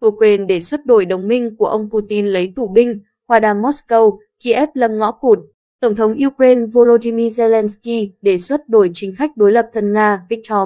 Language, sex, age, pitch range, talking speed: Vietnamese, female, 20-39, 200-235 Hz, 190 wpm